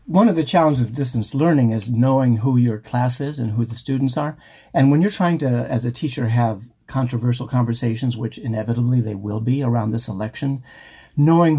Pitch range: 115-140 Hz